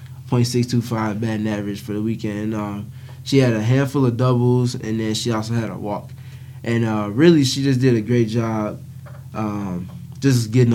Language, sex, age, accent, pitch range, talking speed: English, male, 20-39, American, 110-130 Hz, 175 wpm